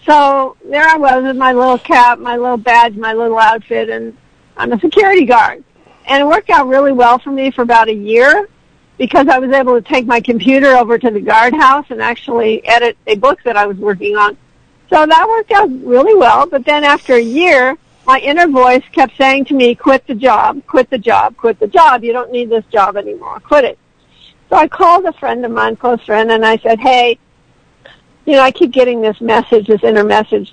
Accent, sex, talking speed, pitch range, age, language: American, female, 220 wpm, 230-295 Hz, 60-79, English